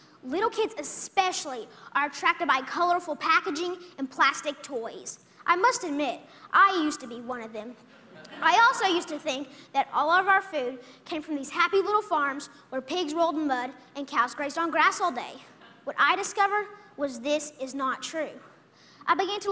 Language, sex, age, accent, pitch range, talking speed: English, female, 20-39, American, 285-395 Hz, 185 wpm